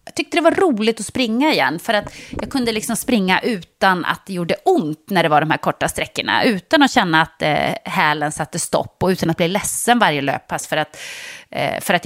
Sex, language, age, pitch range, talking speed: female, English, 30-49, 165-255 Hz, 215 wpm